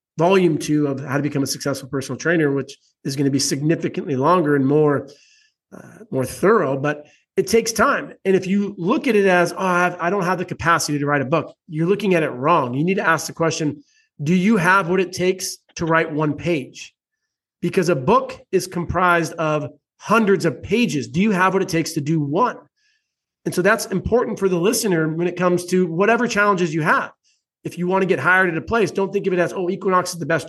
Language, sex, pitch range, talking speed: English, male, 160-200 Hz, 230 wpm